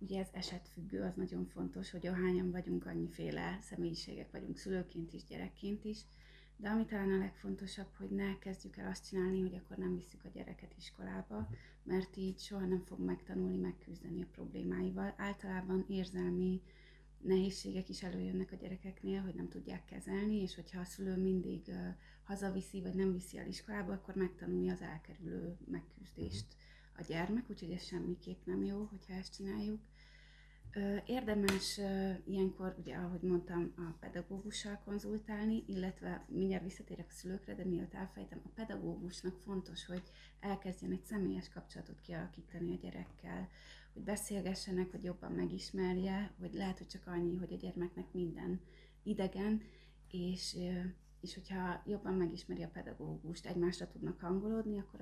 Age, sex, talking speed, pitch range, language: 30-49, female, 145 wpm, 175-195 Hz, Hungarian